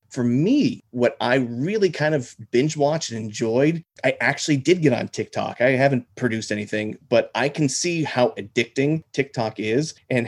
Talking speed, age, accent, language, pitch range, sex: 175 wpm, 30-49, American, English, 110-130 Hz, male